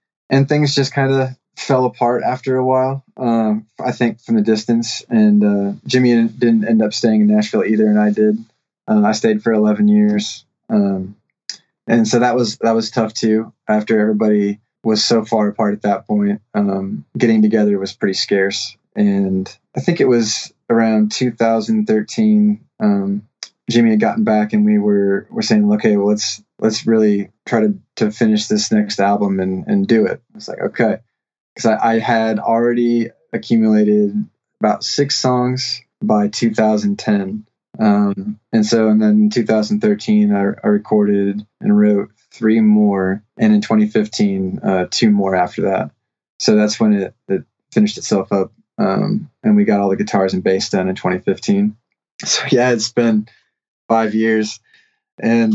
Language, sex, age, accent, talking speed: English, male, 20-39, American, 170 wpm